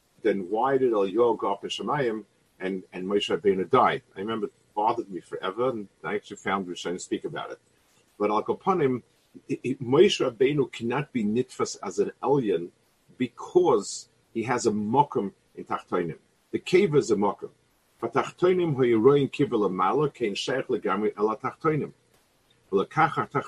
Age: 50-69